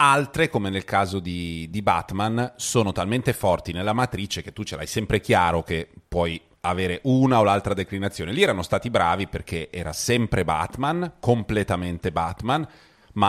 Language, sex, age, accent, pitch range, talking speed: Italian, male, 30-49, native, 85-110 Hz, 165 wpm